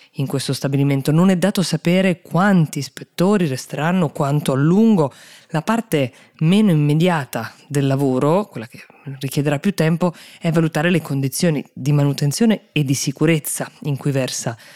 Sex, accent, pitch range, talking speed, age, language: female, native, 130-165 Hz, 145 wpm, 20-39, Italian